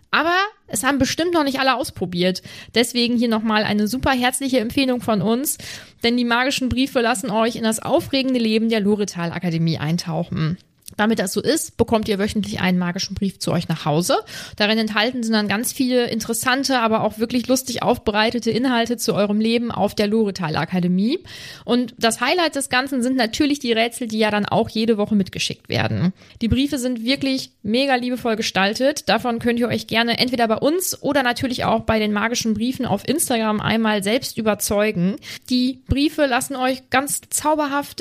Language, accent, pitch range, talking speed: German, German, 210-255 Hz, 180 wpm